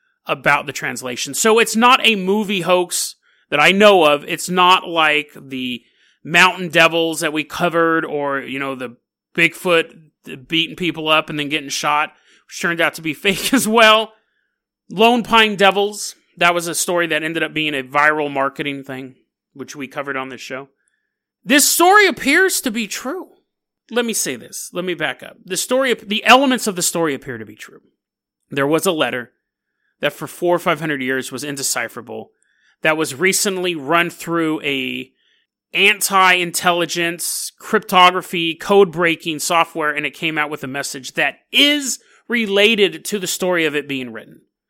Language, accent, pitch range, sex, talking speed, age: English, American, 150-205 Hz, male, 170 wpm, 30-49